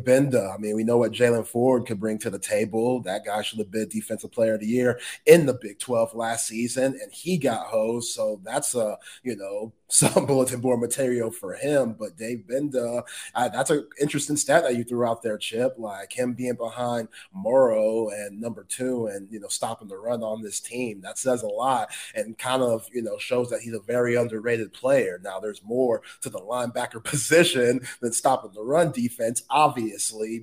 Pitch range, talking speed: 115-160 Hz, 205 wpm